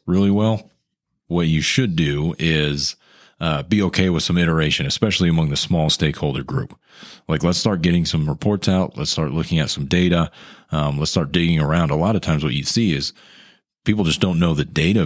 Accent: American